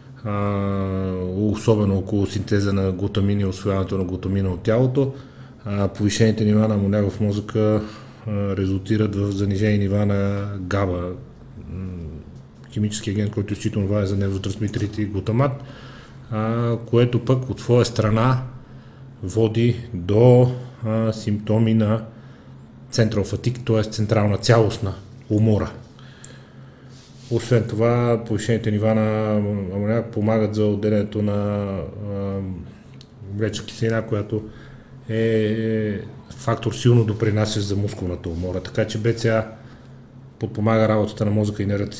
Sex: male